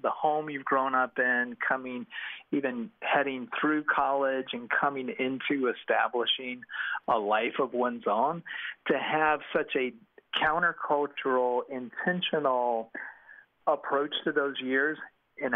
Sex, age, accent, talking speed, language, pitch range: male, 40-59, American, 120 wpm, English, 120-140 Hz